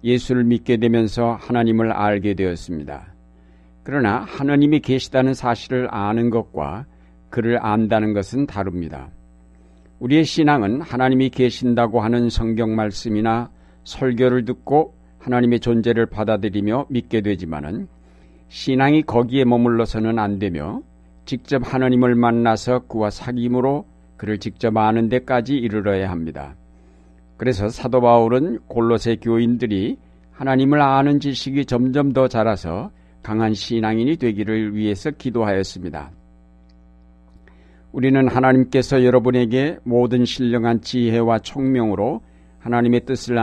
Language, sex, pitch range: Korean, male, 95-125 Hz